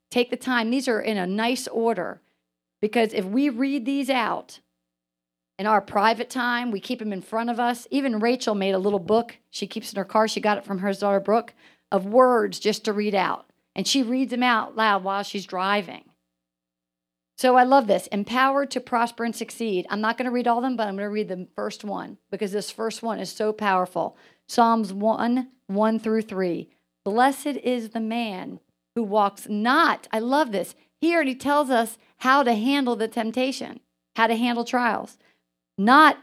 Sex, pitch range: female, 195-245 Hz